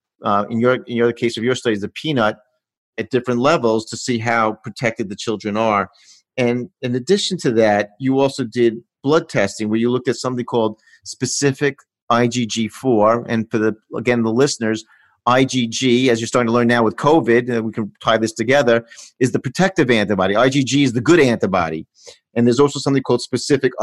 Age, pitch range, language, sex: 50-69, 110-135 Hz, English, male